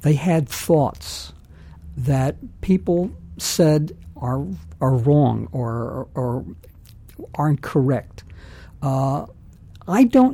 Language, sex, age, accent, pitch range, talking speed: English, male, 60-79, American, 130-170 Hz, 100 wpm